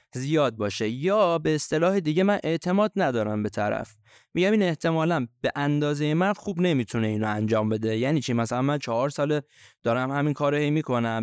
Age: 20-39